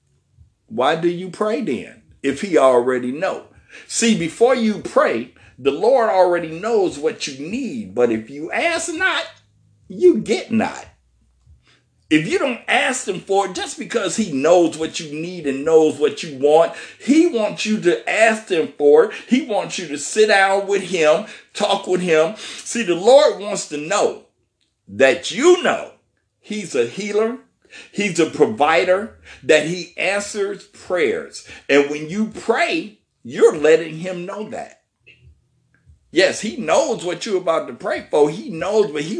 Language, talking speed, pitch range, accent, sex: English, 165 wpm, 155-230 Hz, American, male